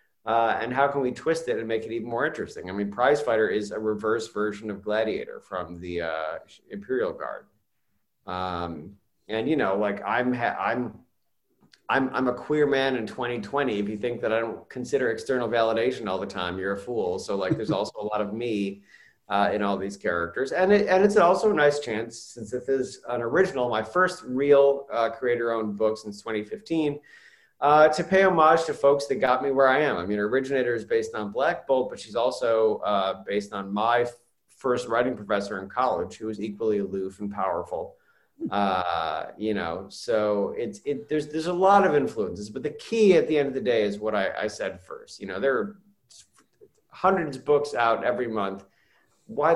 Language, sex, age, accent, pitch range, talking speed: English, male, 30-49, American, 105-145 Hz, 205 wpm